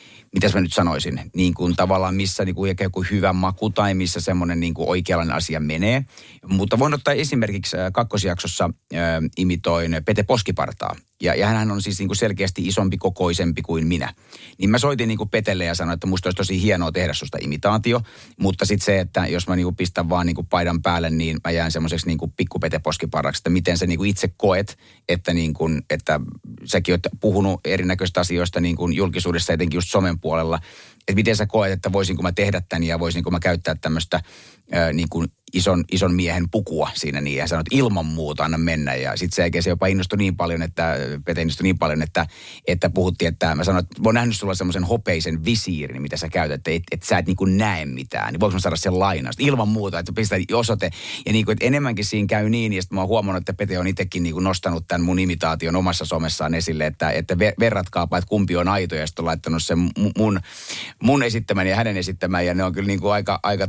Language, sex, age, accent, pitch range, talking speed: Finnish, male, 30-49, native, 85-100 Hz, 205 wpm